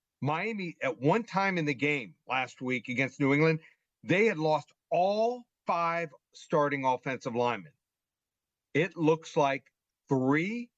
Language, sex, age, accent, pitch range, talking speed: English, male, 50-69, American, 140-175 Hz, 135 wpm